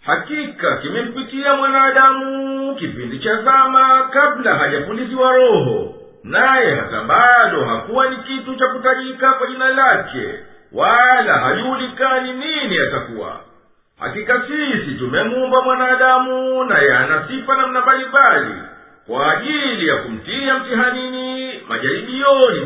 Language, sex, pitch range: Swahili, male, 255-270 Hz